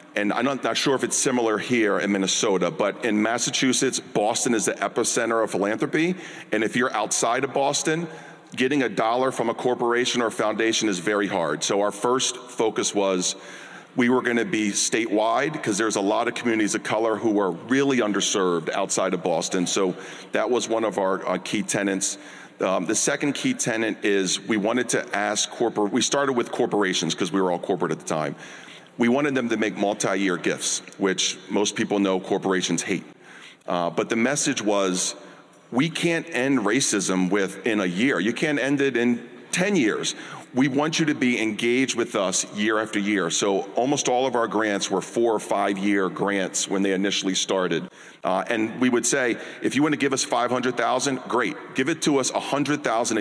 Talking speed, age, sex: 195 wpm, 40-59, male